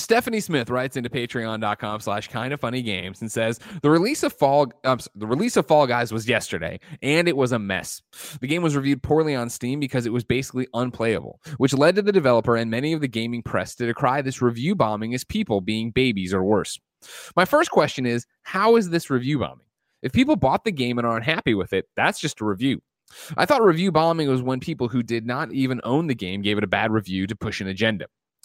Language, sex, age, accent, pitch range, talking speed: English, male, 20-39, American, 115-155 Hz, 220 wpm